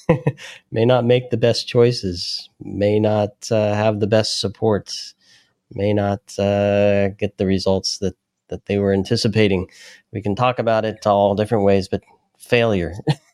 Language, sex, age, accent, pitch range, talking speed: English, male, 30-49, American, 95-110 Hz, 155 wpm